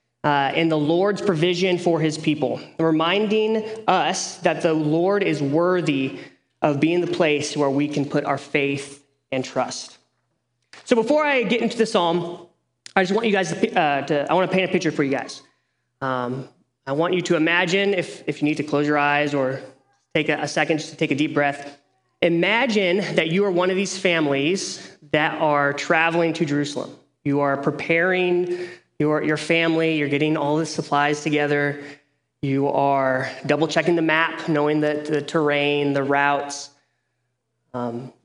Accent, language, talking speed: American, English, 175 wpm